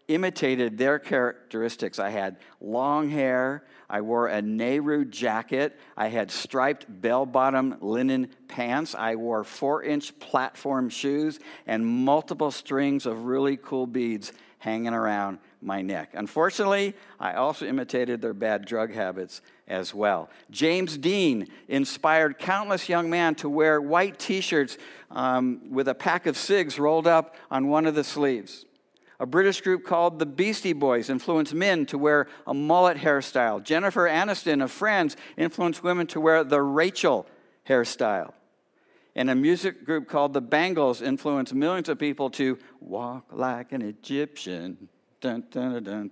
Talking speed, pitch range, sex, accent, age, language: 140 wpm, 125-170 Hz, male, American, 60-79, English